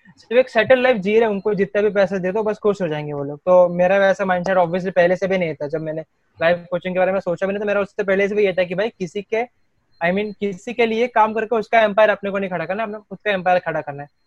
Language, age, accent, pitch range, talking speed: Hindi, 20-39, native, 175-220 Hz, 85 wpm